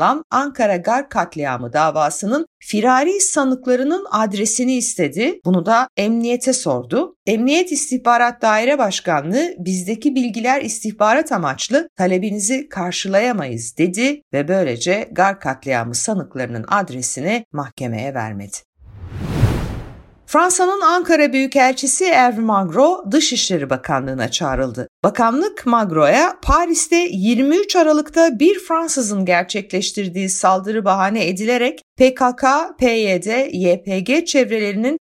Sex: female